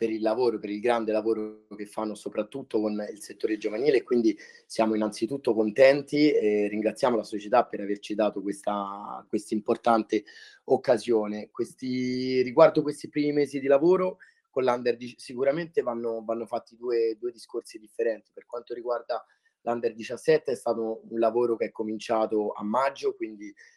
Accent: native